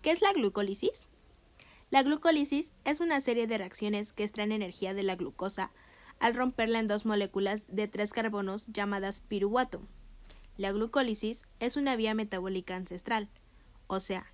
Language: Spanish